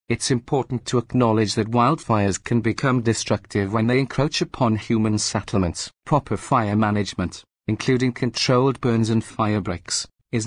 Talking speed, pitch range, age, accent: 145 wpm, 105-130 Hz, 40-59, British